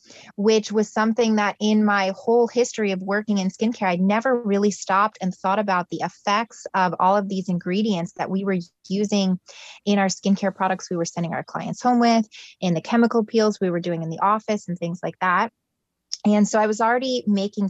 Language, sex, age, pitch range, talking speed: English, female, 20-39, 185-215 Hz, 205 wpm